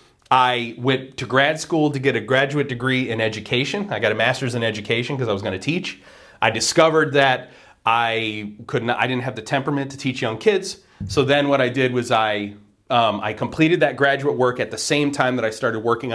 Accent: American